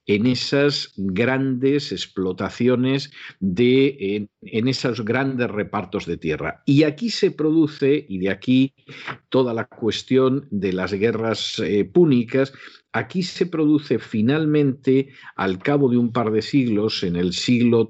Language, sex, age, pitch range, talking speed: Spanish, male, 50-69, 105-135 Hz, 135 wpm